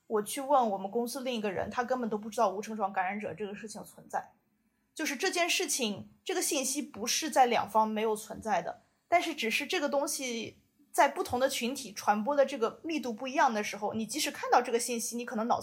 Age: 20-39